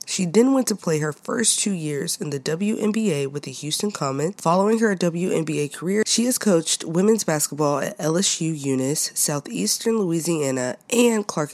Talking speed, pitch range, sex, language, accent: 165 wpm, 145-205 Hz, female, English, American